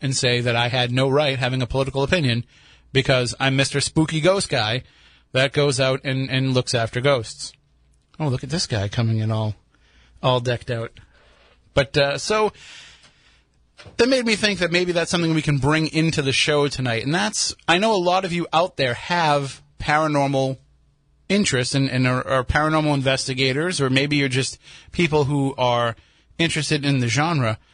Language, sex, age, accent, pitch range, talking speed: English, male, 30-49, American, 120-155 Hz, 175 wpm